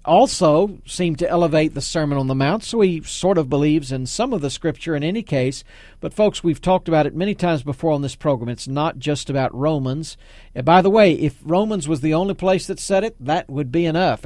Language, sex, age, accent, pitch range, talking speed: English, male, 50-69, American, 140-180 Hz, 235 wpm